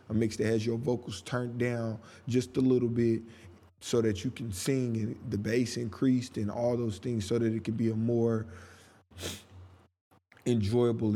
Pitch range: 105-125 Hz